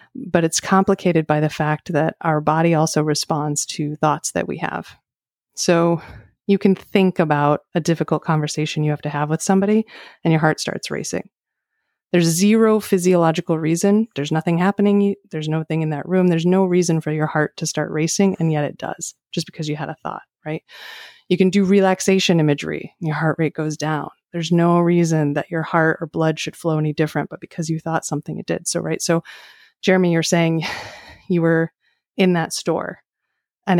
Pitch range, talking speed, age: 155-185 Hz, 195 wpm, 30-49